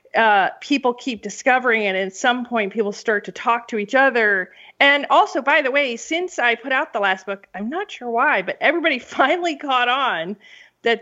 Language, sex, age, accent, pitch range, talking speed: English, female, 40-59, American, 205-265 Hz, 205 wpm